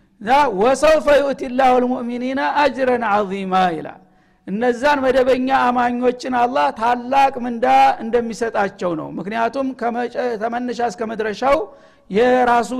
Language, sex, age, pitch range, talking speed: Amharic, male, 60-79, 220-255 Hz, 85 wpm